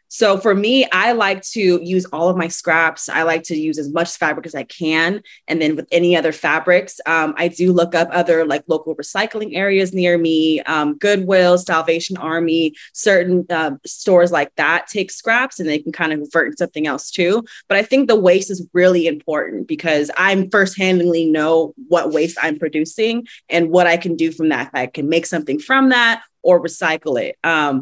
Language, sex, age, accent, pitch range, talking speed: English, female, 20-39, American, 160-185 Hz, 200 wpm